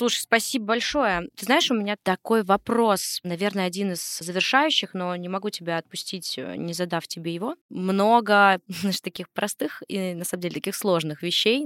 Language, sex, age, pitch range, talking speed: Russian, female, 20-39, 170-200 Hz, 170 wpm